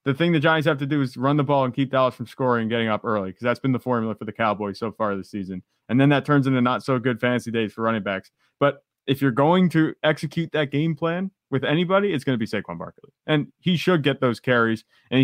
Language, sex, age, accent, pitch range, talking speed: English, male, 30-49, American, 110-140 Hz, 270 wpm